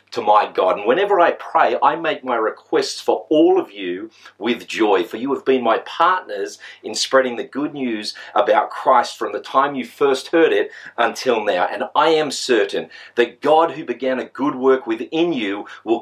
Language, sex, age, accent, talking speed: English, male, 40-59, Australian, 200 wpm